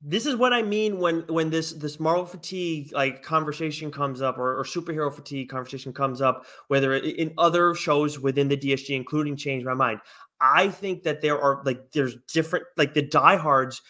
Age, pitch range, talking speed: 20-39, 135-175 Hz, 190 wpm